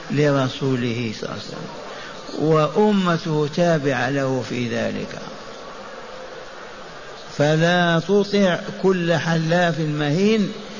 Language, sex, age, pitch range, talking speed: Arabic, male, 50-69, 140-180 Hz, 85 wpm